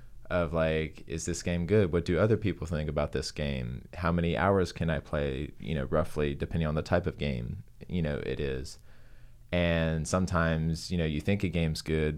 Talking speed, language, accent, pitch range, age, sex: 205 wpm, English, American, 80-110 Hz, 20-39, male